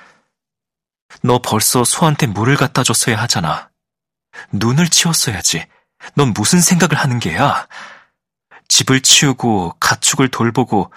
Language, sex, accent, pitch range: Korean, male, native, 125-165 Hz